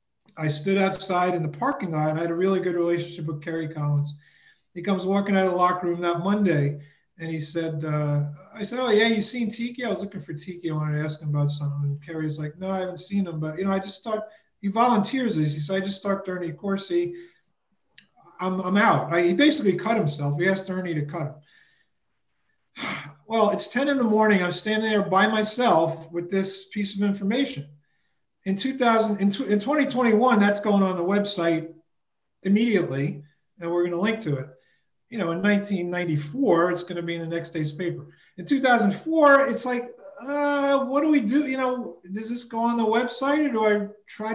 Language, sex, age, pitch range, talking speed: English, male, 40-59, 160-215 Hz, 205 wpm